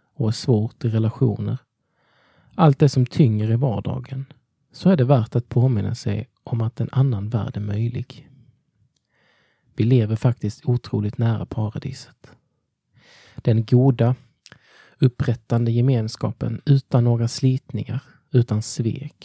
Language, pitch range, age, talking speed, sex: Swedish, 115-135 Hz, 20-39, 120 wpm, male